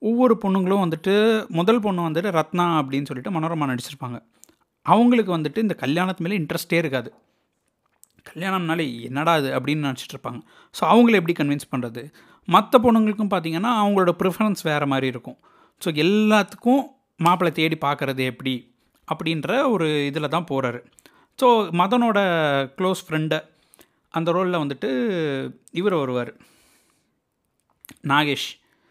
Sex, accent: male, native